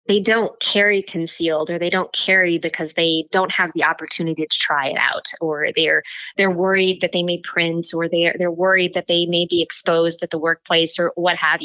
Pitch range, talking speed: 165-195 Hz, 210 wpm